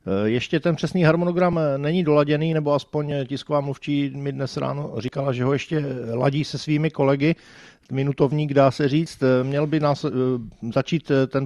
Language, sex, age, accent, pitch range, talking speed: Czech, male, 50-69, native, 115-140 Hz, 155 wpm